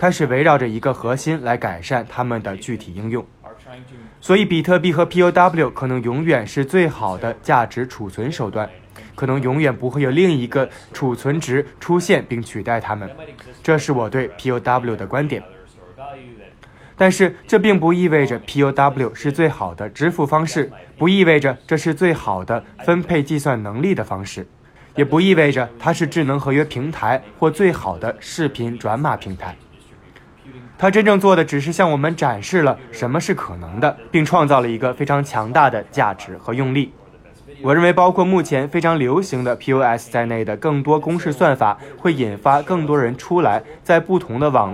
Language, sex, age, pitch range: Chinese, male, 20-39, 115-160 Hz